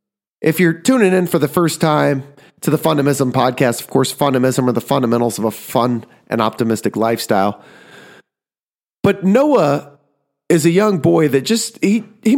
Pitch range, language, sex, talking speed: 130-190 Hz, English, male, 165 wpm